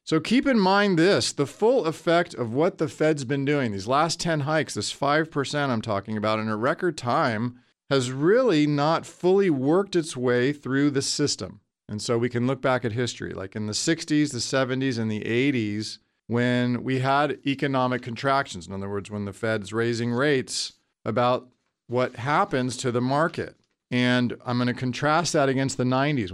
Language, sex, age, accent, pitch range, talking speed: English, male, 40-59, American, 115-150 Hz, 185 wpm